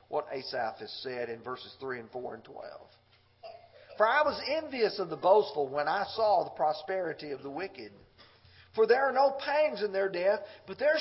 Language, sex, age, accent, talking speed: English, male, 40-59, American, 195 wpm